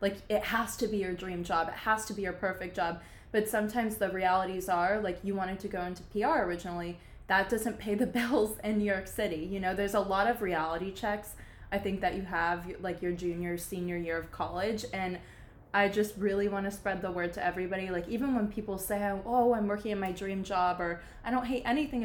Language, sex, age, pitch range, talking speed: English, female, 20-39, 175-200 Hz, 230 wpm